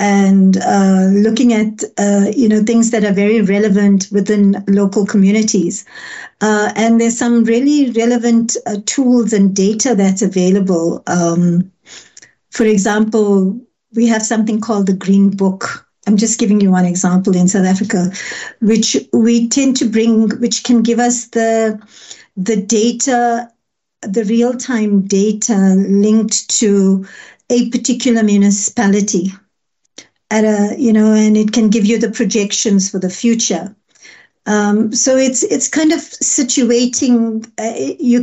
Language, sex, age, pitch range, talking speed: Dutch, female, 60-79, 200-230 Hz, 140 wpm